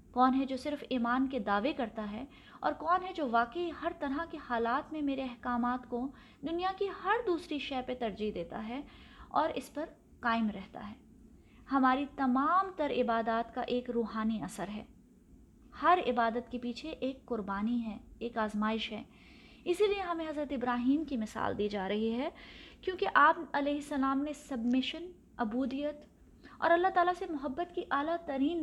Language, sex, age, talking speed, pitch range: Urdu, female, 20-39, 175 wpm, 235-295 Hz